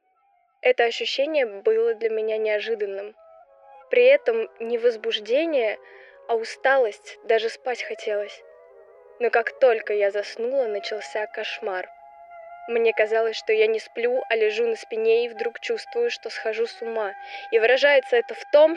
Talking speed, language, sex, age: 140 wpm, Russian, female, 10-29